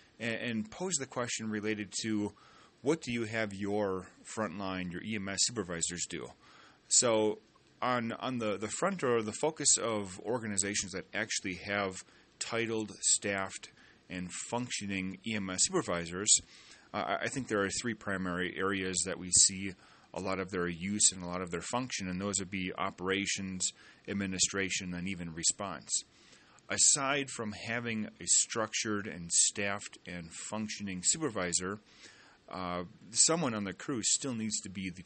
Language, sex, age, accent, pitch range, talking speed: English, male, 30-49, American, 95-110 Hz, 150 wpm